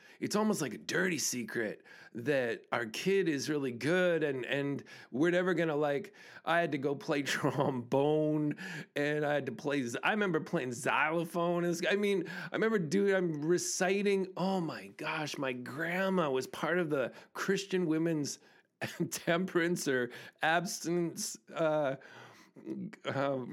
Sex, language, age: male, English, 40-59